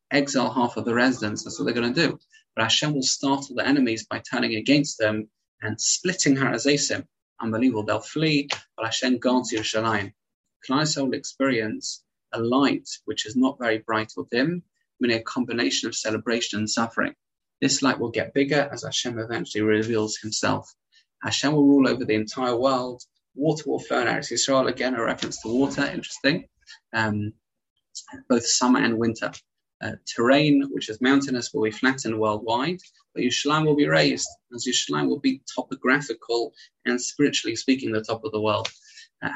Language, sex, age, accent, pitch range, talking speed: English, male, 20-39, British, 110-140 Hz, 170 wpm